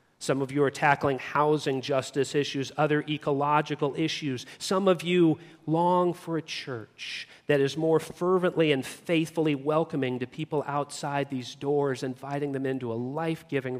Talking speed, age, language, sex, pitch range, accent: 150 wpm, 40-59, English, male, 130-160 Hz, American